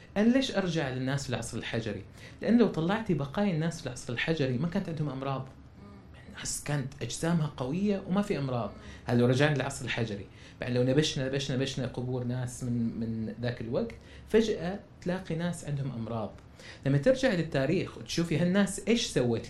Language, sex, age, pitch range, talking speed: Arabic, male, 30-49, 120-175 Hz, 165 wpm